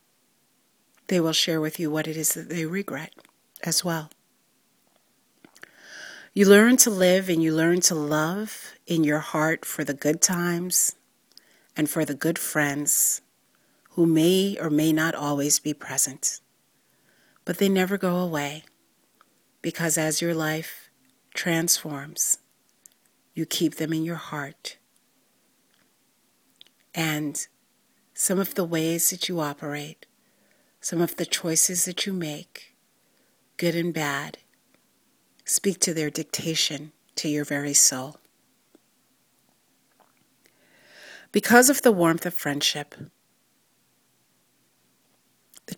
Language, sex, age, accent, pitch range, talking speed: English, female, 40-59, American, 150-175 Hz, 120 wpm